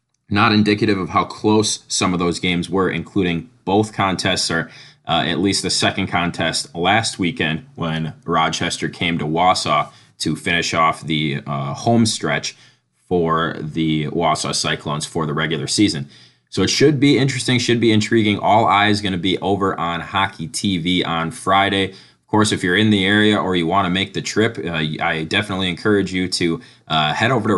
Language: English